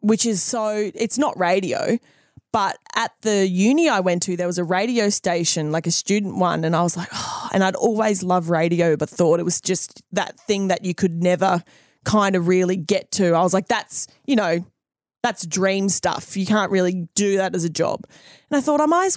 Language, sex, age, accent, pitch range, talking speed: English, female, 20-39, Australian, 180-215 Hz, 220 wpm